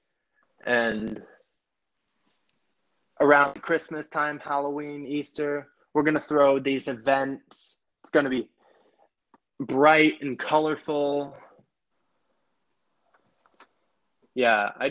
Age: 20-39